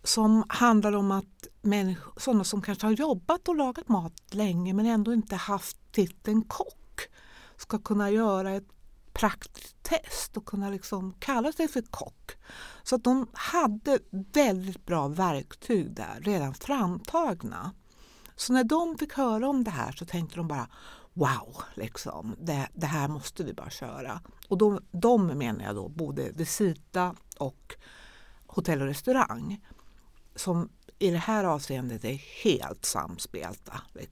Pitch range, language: 155-220 Hz, Swedish